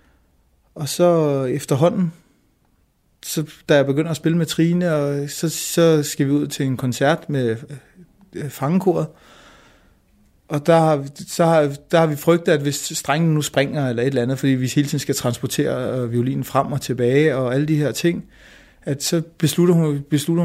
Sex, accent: male, native